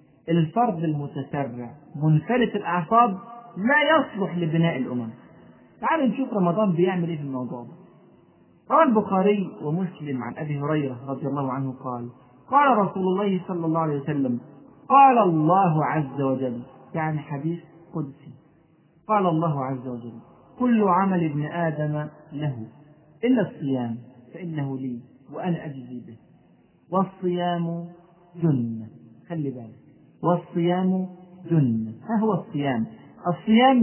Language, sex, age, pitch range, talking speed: Arabic, male, 40-59, 145-210 Hz, 115 wpm